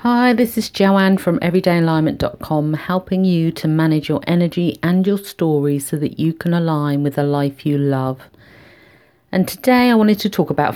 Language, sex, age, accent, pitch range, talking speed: English, female, 50-69, British, 145-180 Hz, 180 wpm